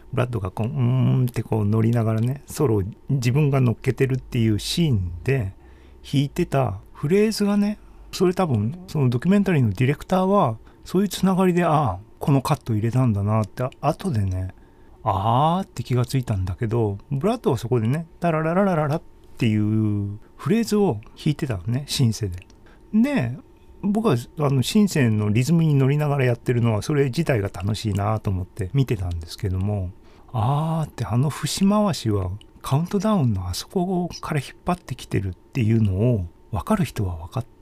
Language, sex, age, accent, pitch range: Japanese, male, 40-59, native, 105-150 Hz